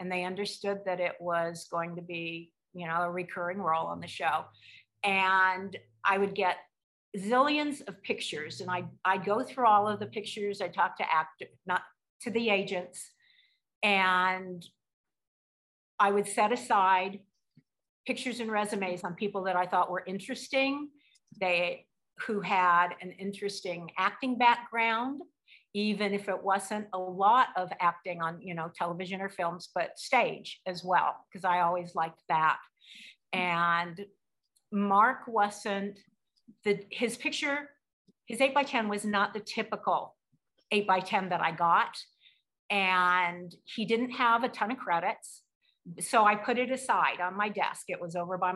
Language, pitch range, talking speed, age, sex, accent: English, 180-215 Hz, 155 wpm, 50-69, female, American